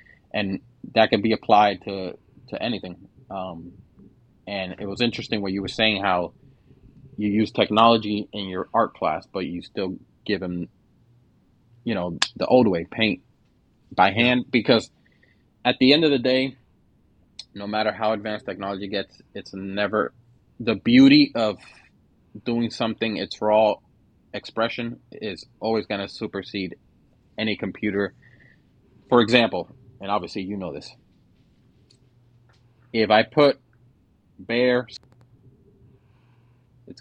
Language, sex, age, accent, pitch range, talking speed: English, male, 20-39, American, 100-120 Hz, 130 wpm